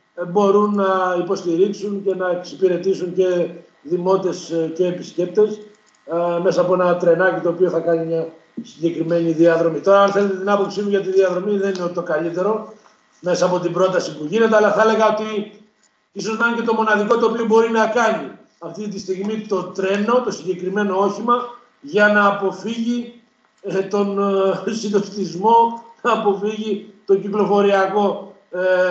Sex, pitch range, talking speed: male, 180-210 Hz, 150 wpm